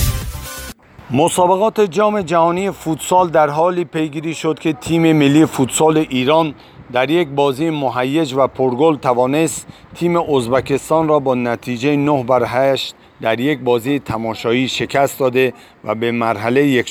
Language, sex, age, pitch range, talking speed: Persian, male, 50-69, 115-150 Hz, 135 wpm